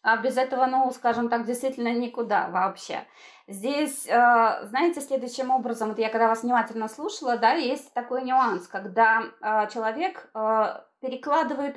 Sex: female